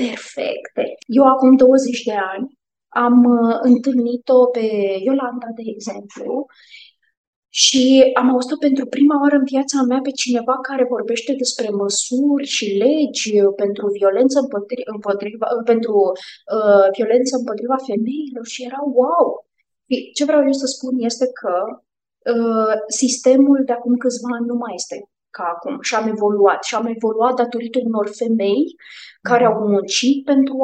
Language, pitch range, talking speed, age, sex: Romanian, 230-265 Hz, 135 wpm, 20-39, female